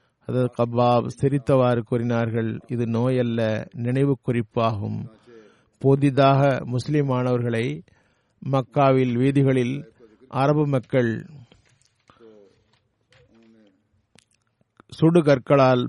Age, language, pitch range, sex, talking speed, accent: 50-69, Tamil, 120-135 Hz, male, 60 wpm, native